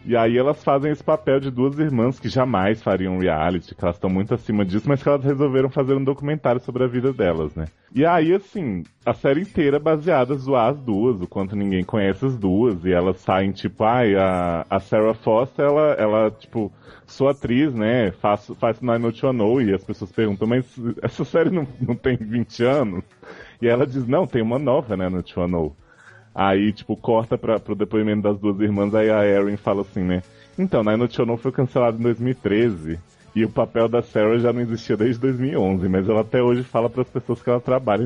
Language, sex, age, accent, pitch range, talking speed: English, male, 20-39, Brazilian, 95-130 Hz, 215 wpm